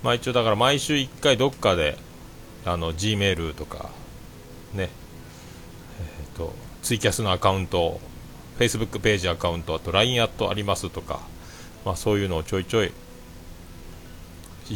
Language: Japanese